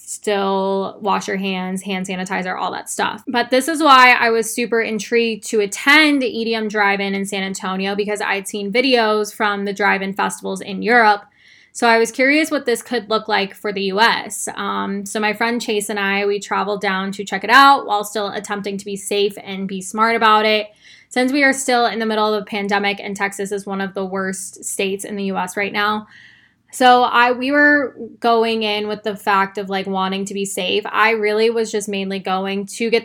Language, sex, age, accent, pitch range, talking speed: English, female, 10-29, American, 195-230 Hz, 215 wpm